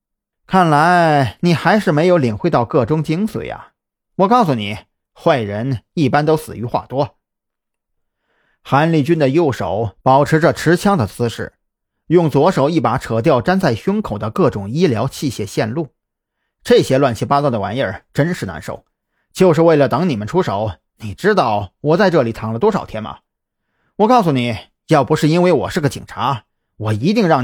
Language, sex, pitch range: Chinese, male, 115-175 Hz